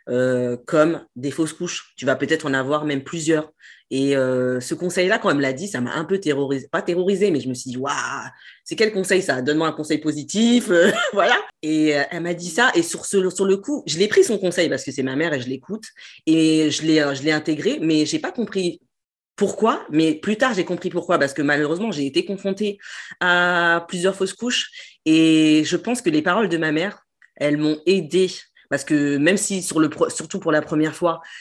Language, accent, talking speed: French, French, 220 wpm